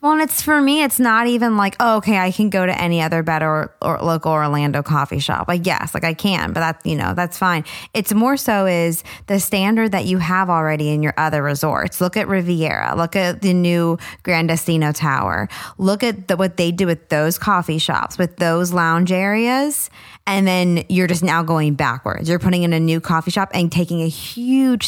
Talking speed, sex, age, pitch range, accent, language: 210 wpm, female, 20-39, 165-205 Hz, American, English